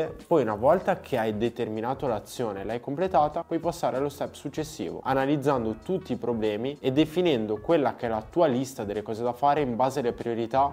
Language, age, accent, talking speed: Italian, 20-39, native, 195 wpm